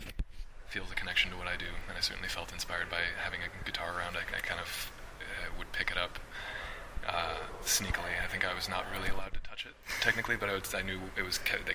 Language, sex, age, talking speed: English, male, 20-39, 245 wpm